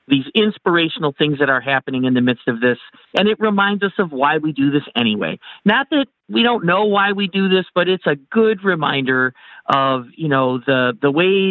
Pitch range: 130-170 Hz